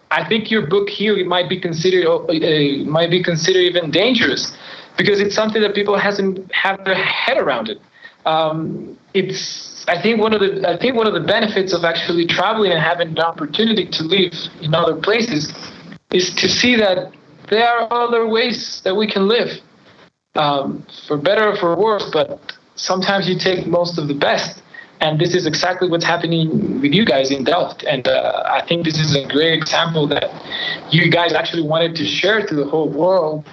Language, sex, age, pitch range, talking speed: Spanish, male, 20-39, 155-195 Hz, 195 wpm